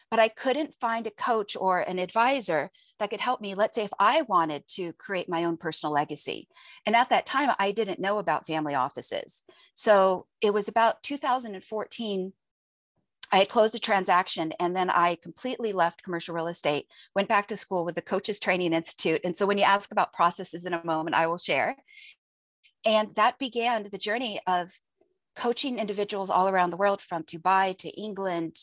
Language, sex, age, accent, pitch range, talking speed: English, female, 40-59, American, 180-225 Hz, 185 wpm